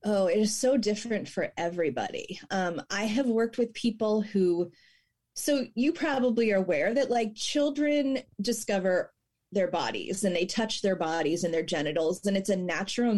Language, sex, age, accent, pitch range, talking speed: English, female, 30-49, American, 180-235 Hz, 170 wpm